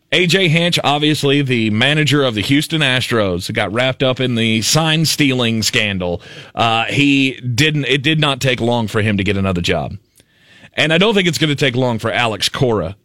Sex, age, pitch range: male, 30-49, 105-145 Hz